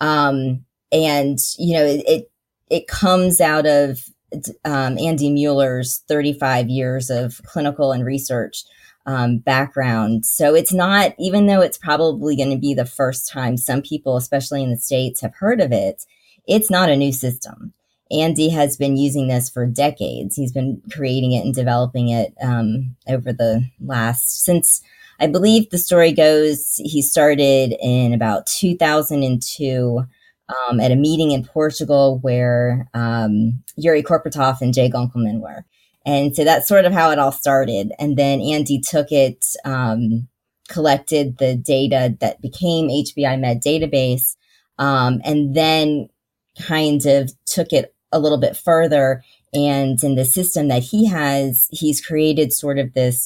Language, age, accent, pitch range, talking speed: English, 20-39, American, 125-150 Hz, 155 wpm